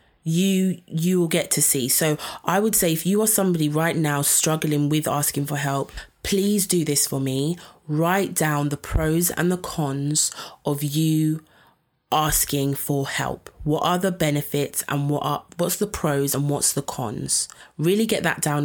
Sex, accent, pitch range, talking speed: female, British, 140-170 Hz, 180 wpm